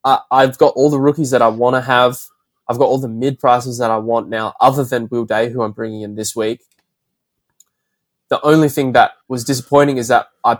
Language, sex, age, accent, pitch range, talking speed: English, male, 20-39, Australian, 115-140 Hz, 225 wpm